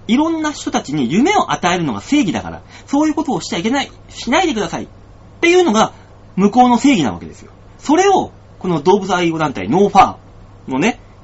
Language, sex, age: Japanese, male, 30-49